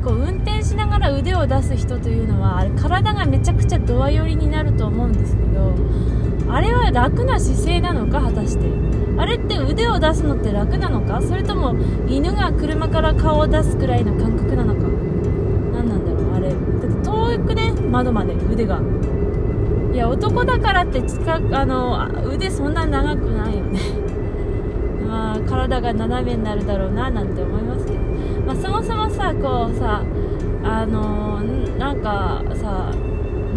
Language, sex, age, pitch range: Japanese, female, 20-39, 95-105 Hz